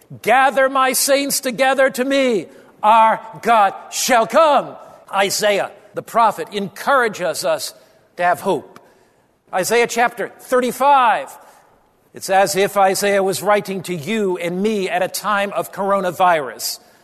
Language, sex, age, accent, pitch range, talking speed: English, male, 50-69, American, 205-245 Hz, 125 wpm